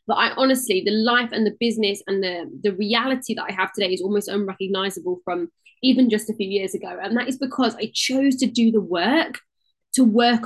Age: 10-29